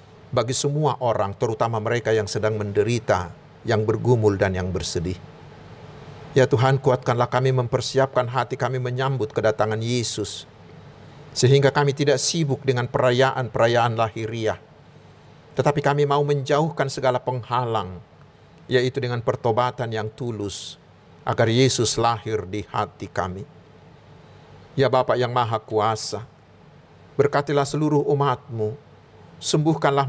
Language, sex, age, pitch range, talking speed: Indonesian, male, 50-69, 115-145 Hz, 110 wpm